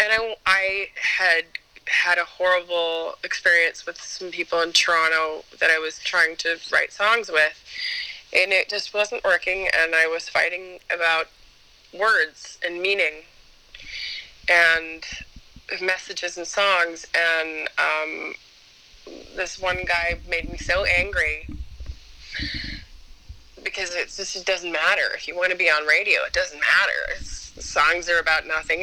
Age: 20-39